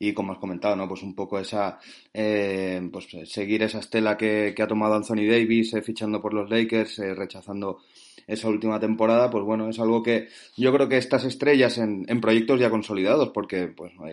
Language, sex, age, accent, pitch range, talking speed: Spanish, male, 20-39, Spanish, 100-115 Hz, 210 wpm